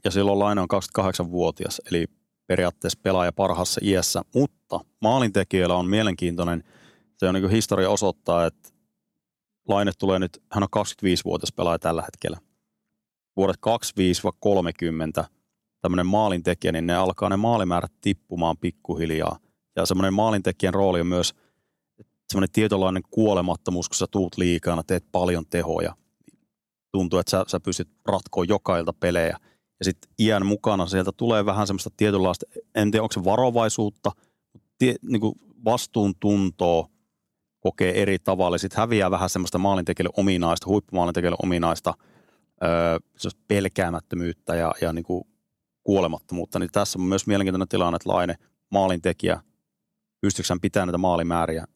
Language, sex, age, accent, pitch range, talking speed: Finnish, male, 30-49, native, 85-100 Hz, 130 wpm